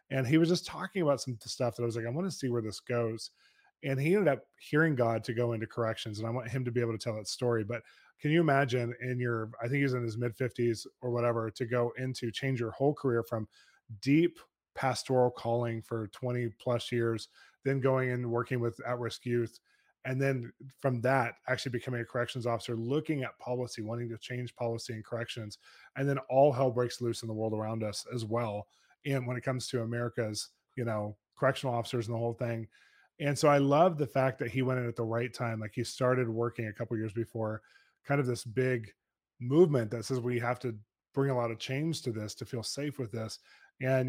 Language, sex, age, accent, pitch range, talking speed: English, male, 20-39, American, 115-135 Hz, 230 wpm